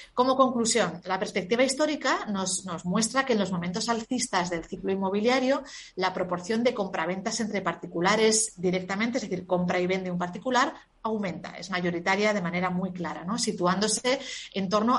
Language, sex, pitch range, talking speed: Spanish, female, 180-235 Hz, 160 wpm